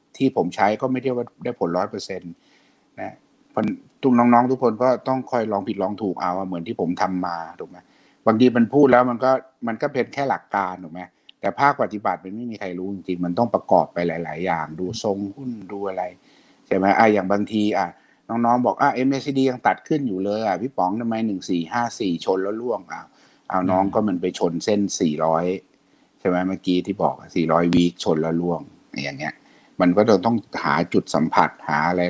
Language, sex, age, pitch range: Thai, male, 60-79, 90-120 Hz